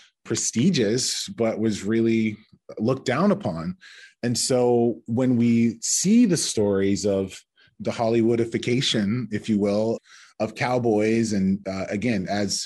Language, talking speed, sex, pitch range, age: English, 125 wpm, male, 115-140 Hz, 30-49